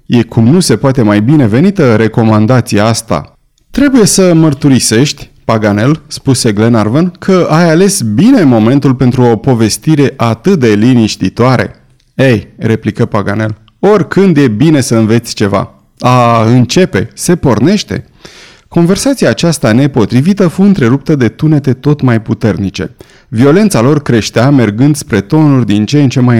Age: 30-49